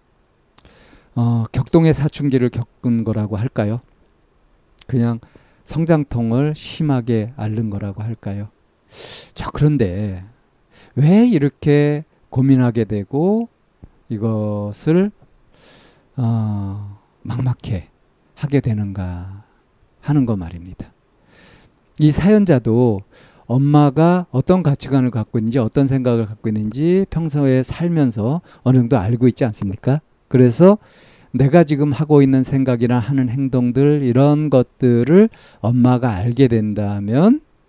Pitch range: 110-145 Hz